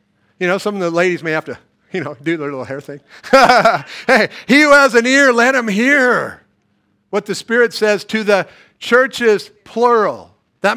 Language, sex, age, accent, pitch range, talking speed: English, male, 50-69, American, 160-235 Hz, 190 wpm